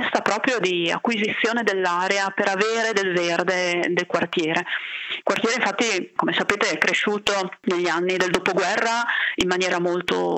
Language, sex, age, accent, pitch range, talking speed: Italian, female, 30-49, native, 175-205 Hz, 140 wpm